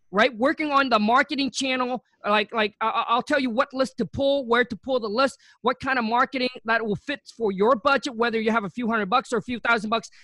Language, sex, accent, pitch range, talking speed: English, male, American, 225-275 Hz, 245 wpm